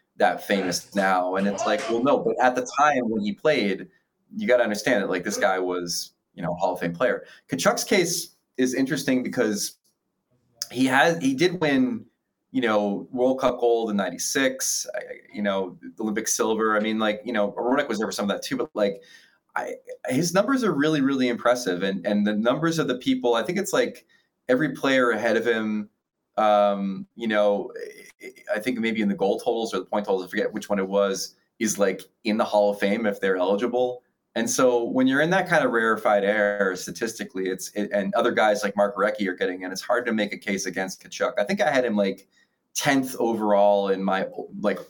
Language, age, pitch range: English, 20-39, 100-125 Hz